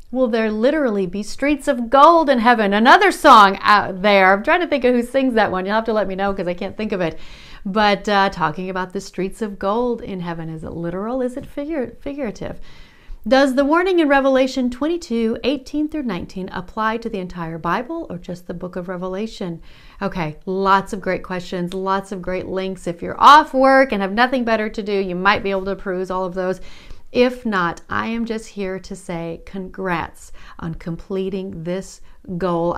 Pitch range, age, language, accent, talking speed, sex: 180-235 Hz, 40-59, English, American, 205 wpm, female